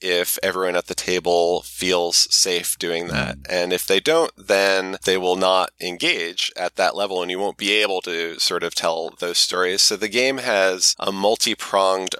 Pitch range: 90-110 Hz